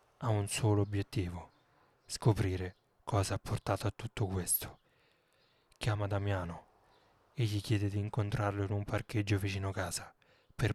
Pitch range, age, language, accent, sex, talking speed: 95-110 Hz, 30-49, Italian, native, male, 135 wpm